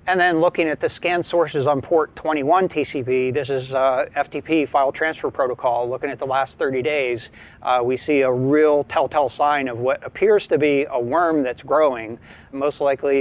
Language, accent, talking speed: English, American, 190 wpm